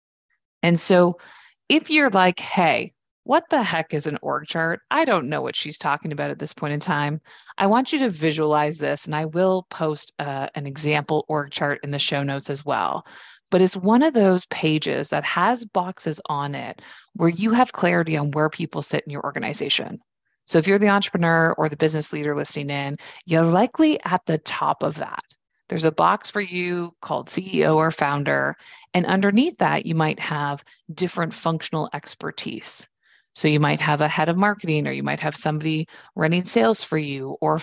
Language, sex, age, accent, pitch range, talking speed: English, female, 30-49, American, 150-185 Hz, 195 wpm